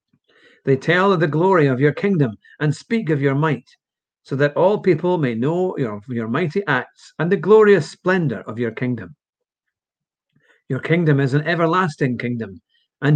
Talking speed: 170 wpm